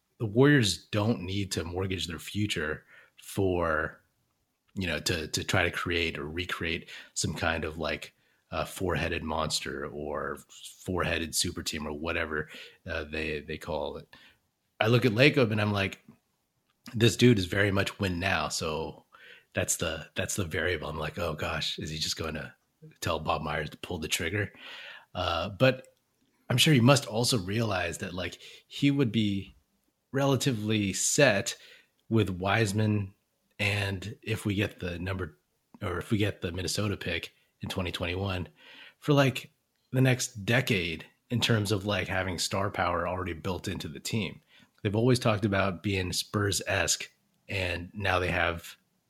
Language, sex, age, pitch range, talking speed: English, male, 30-49, 85-110 Hz, 165 wpm